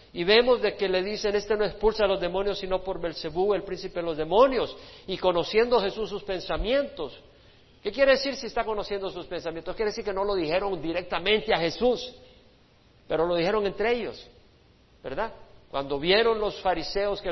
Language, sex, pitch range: Spanish, male, 160-210 Hz